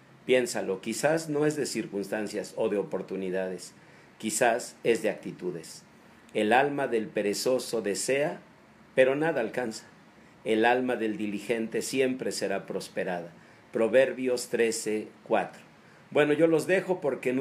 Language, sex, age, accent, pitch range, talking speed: Spanish, male, 50-69, Mexican, 105-130 Hz, 130 wpm